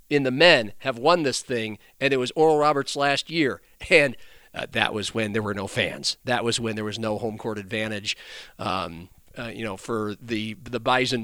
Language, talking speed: English, 215 wpm